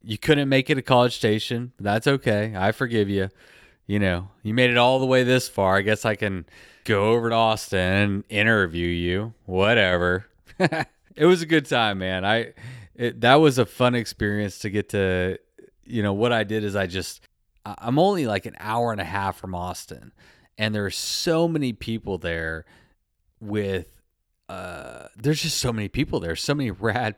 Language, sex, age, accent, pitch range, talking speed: English, male, 30-49, American, 95-115 Hz, 190 wpm